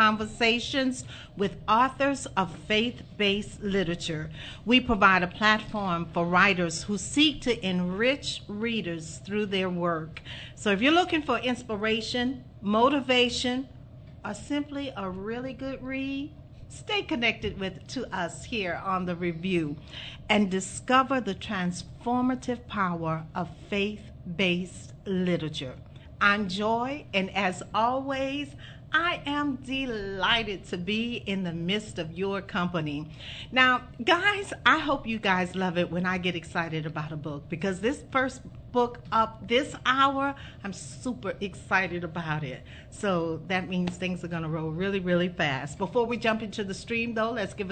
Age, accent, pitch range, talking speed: 50-69, American, 180-240 Hz, 140 wpm